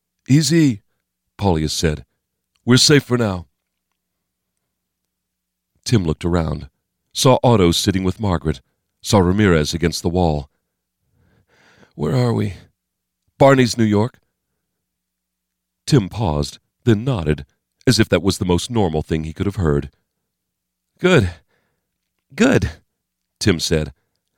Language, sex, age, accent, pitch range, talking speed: English, male, 40-59, American, 75-110 Hz, 115 wpm